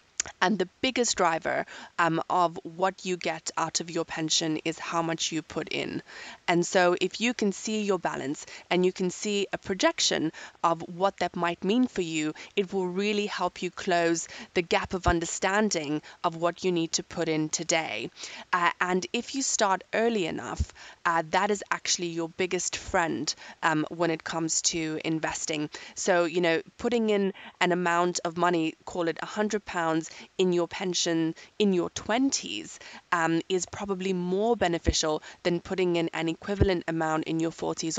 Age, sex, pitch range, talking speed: 20-39, female, 165-190 Hz, 175 wpm